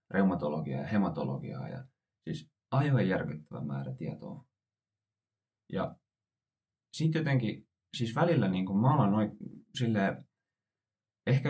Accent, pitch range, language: native, 100-125 Hz, Finnish